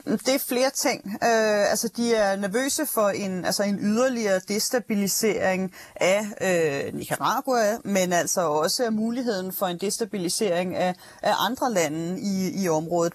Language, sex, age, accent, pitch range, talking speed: Danish, female, 30-49, native, 180-225 Hz, 150 wpm